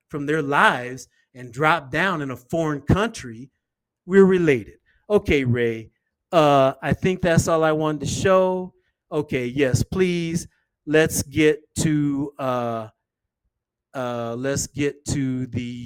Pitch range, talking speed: 125-180 Hz, 130 wpm